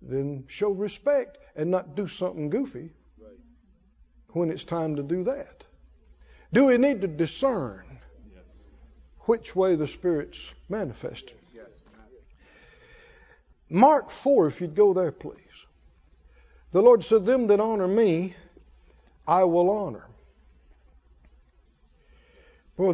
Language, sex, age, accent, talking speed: English, male, 60-79, American, 110 wpm